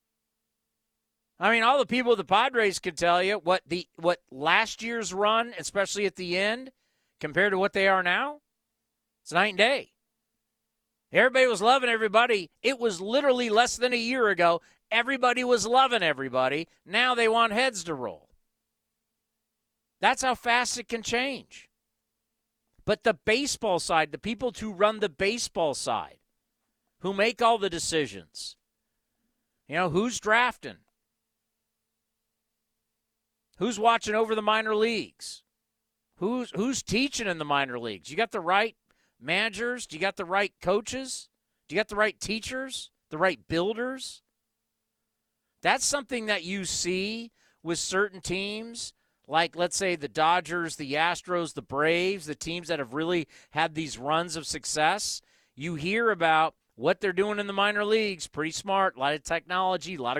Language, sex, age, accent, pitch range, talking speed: English, male, 40-59, American, 170-230 Hz, 155 wpm